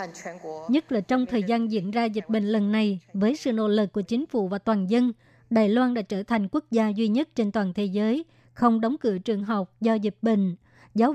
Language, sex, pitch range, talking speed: Vietnamese, male, 210-240 Hz, 230 wpm